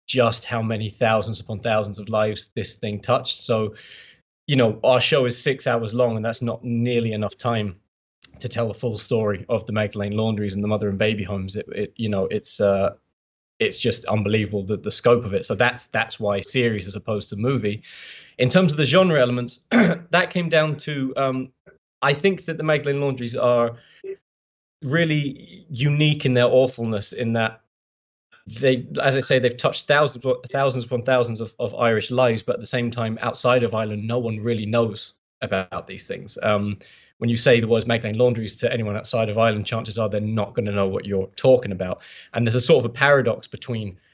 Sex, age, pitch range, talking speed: male, 20-39, 105-125 Hz, 205 wpm